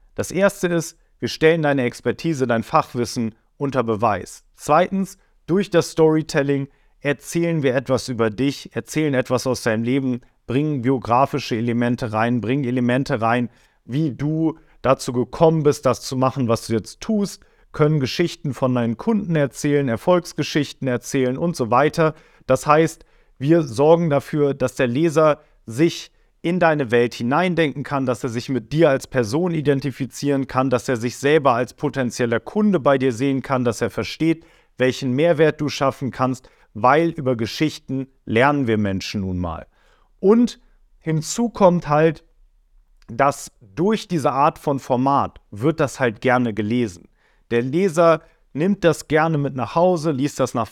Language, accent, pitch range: German, German, 125-160 Hz